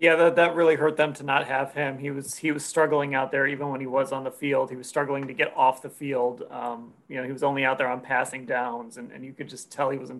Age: 30-49